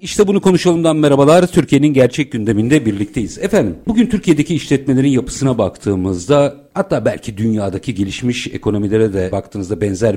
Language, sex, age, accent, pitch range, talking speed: Turkish, male, 50-69, native, 105-155 Hz, 130 wpm